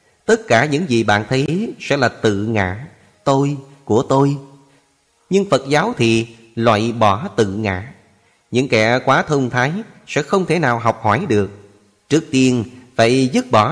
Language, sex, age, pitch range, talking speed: Vietnamese, male, 30-49, 115-145 Hz, 165 wpm